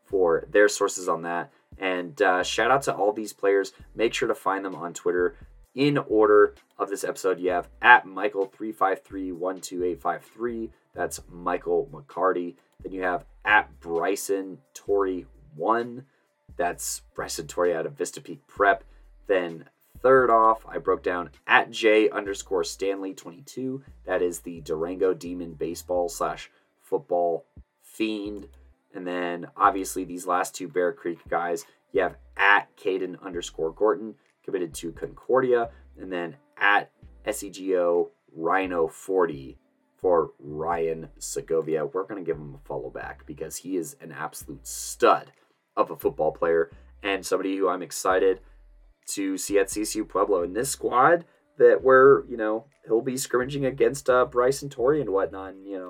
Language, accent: English, American